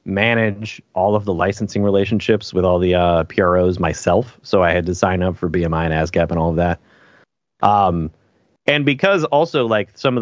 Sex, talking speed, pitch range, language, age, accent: male, 195 wpm, 90-115 Hz, English, 30-49, American